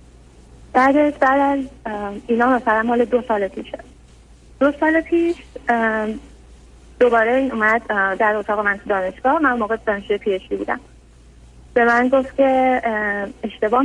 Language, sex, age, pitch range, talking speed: Persian, female, 30-49, 205-270 Hz, 135 wpm